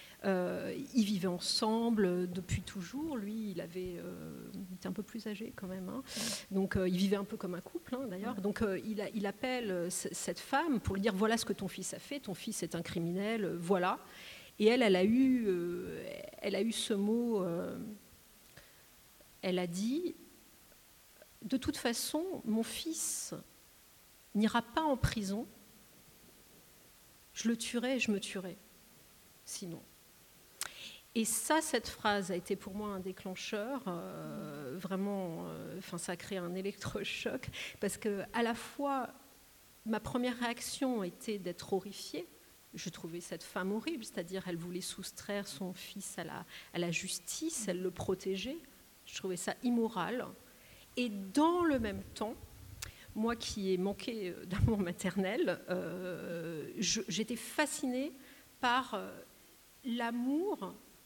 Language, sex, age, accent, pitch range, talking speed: French, female, 40-59, French, 185-235 Hz, 160 wpm